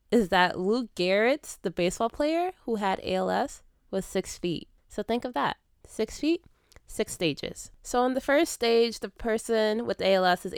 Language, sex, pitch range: English, female, 175-220 Hz